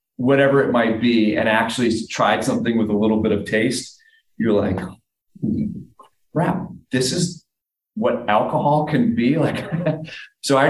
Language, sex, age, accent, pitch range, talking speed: English, male, 30-49, American, 105-135 Hz, 145 wpm